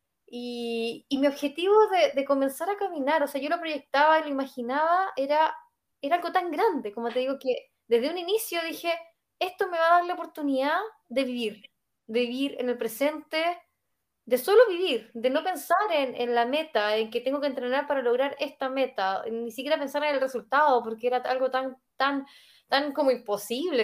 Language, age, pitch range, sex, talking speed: Spanish, 20-39, 230-300 Hz, female, 190 wpm